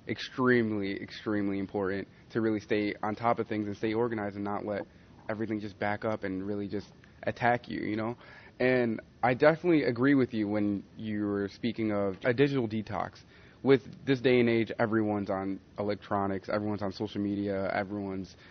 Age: 20-39